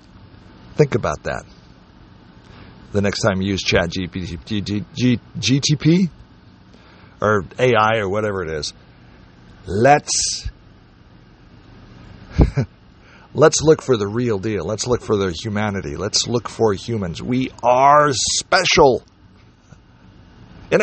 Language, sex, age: English, male, 50-69